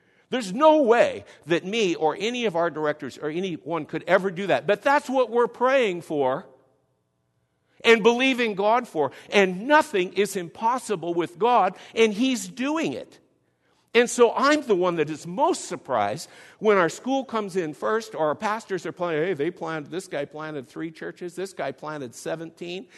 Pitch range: 130-195 Hz